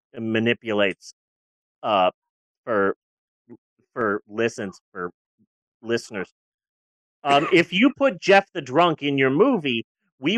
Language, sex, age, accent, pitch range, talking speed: English, male, 30-49, American, 130-190 Hz, 105 wpm